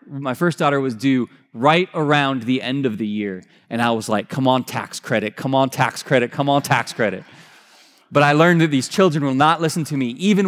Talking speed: 230 wpm